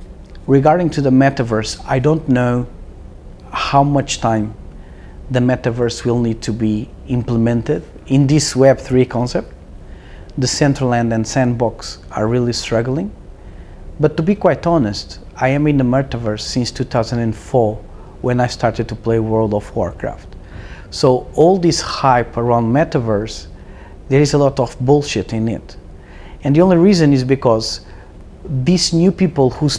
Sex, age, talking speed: male, 40-59, 145 wpm